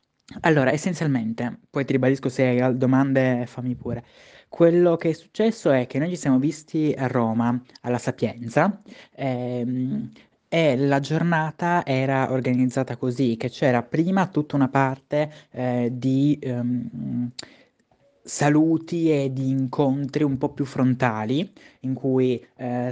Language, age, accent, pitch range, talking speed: Italian, 20-39, native, 120-140 Hz, 135 wpm